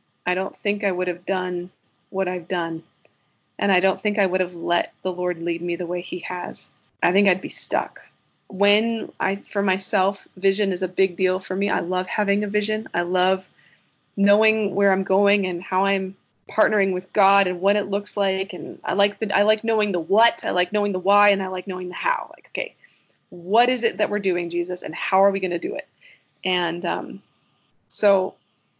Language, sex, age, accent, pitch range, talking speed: English, female, 20-39, American, 185-205 Hz, 215 wpm